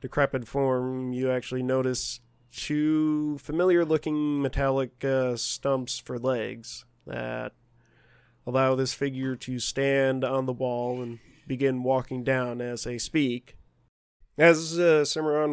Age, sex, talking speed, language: 20-39, male, 115 wpm, English